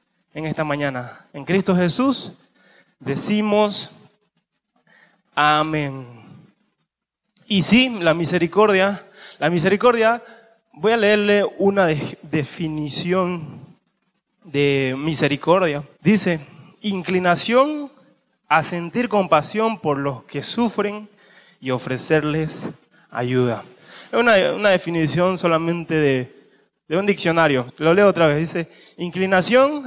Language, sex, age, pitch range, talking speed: Spanish, male, 20-39, 160-215 Hz, 95 wpm